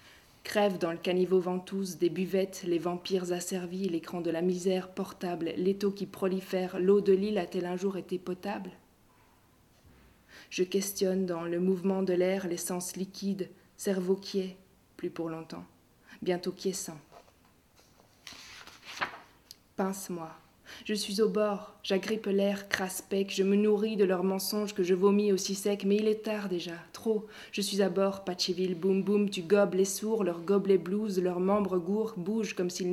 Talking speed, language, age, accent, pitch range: 165 wpm, French, 20-39, French, 180-205 Hz